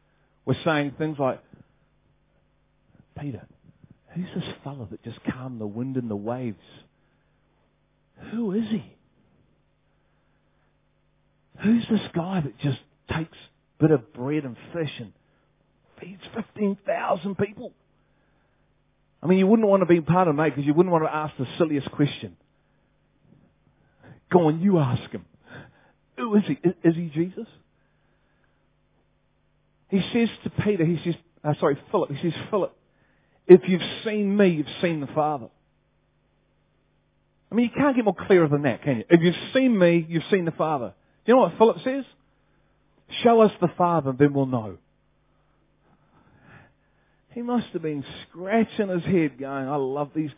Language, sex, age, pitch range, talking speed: English, male, 40-59, 140-190 Hz, 150 wpm